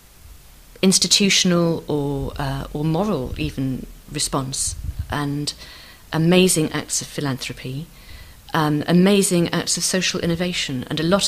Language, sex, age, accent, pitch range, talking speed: English, female, 40-59, British, 135-170 Hz, 110 wpm